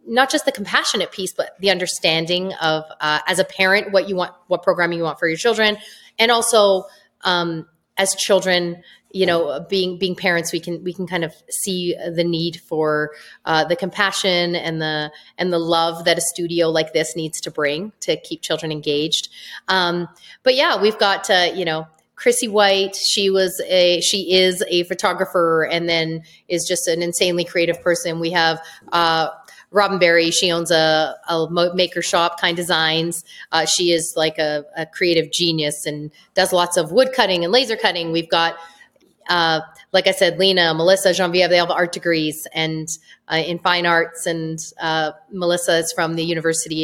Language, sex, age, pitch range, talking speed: English, female, 30-49, 165-190 Hz, 185 wpm